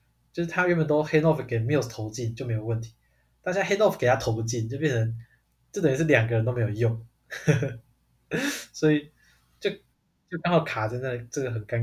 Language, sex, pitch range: Chinese, male, 115-145 Hz